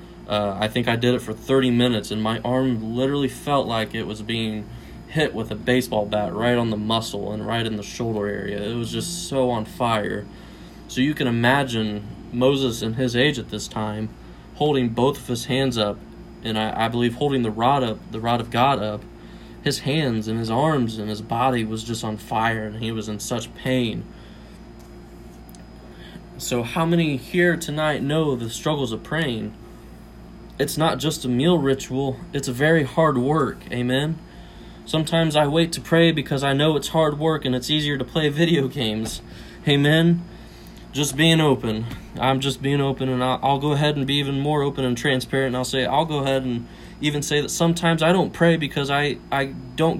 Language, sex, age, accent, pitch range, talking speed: English, male, 20-39, American, 115-145 Hz, 200 wpm